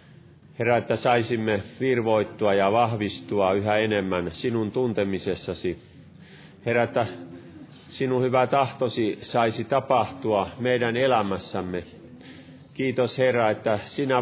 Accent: native